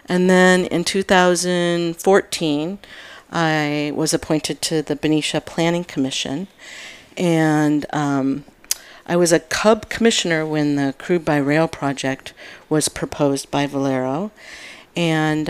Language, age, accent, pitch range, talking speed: English, 50-69, American, 140-170 Hz, 115 wpm